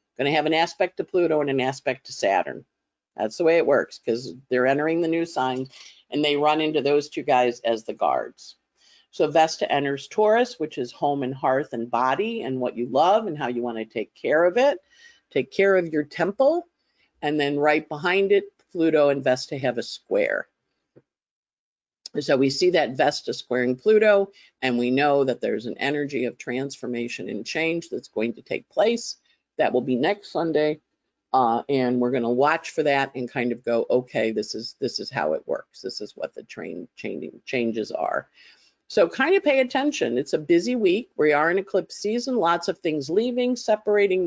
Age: 50-69